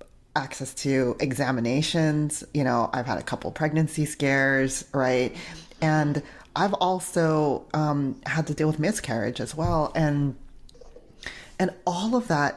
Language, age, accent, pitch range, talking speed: English, 30-49, American, 140-180 Hz, 135 wpm